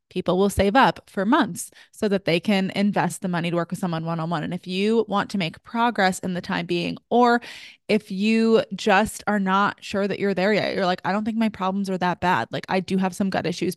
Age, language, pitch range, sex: 20-39, English, 180-205 Hz, female